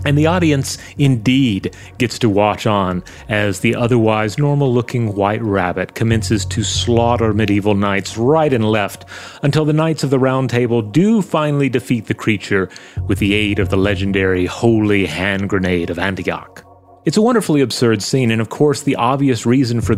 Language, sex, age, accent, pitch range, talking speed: English, male, 30-49, American, 95-130 Hz, 170 wpm